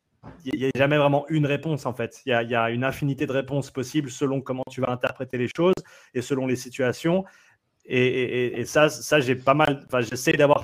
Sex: male